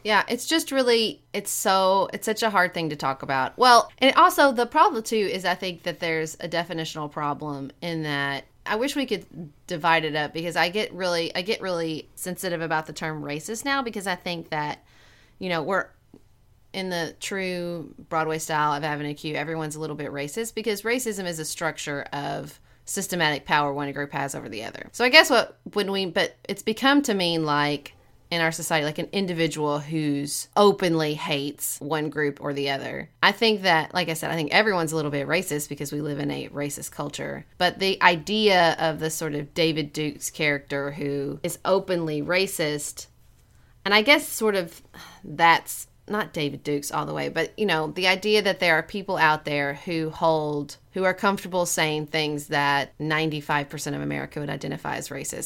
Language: English